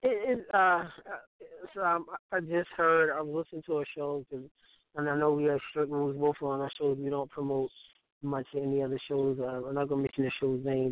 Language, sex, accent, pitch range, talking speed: English, male, American, 135-155 Hz, 230 wpm